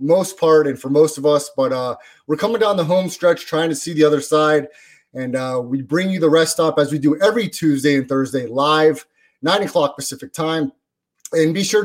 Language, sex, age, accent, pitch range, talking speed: English, male, 30-49, American, 150-190 Hz, 225 wpm